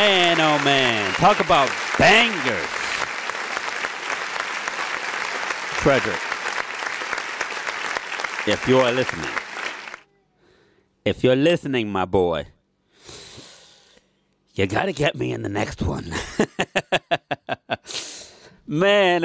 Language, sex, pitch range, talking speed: English, male, 110-160 Hz, 80 wpm